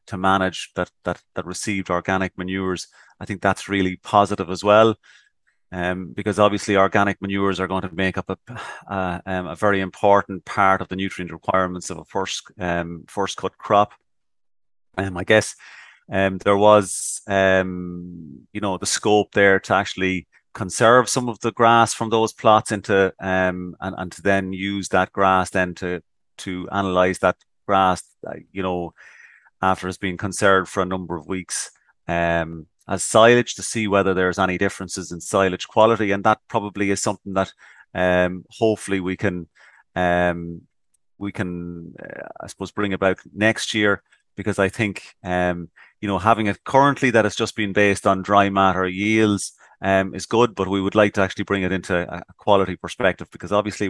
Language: English